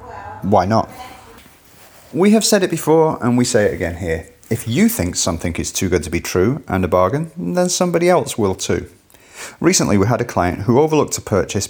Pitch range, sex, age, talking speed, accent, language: 95-145 Hz, male, 30-49, 205 wpm, British, English